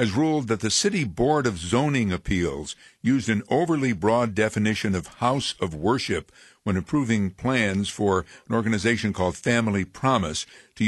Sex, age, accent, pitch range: male, 60-79, American, 95-115 Hz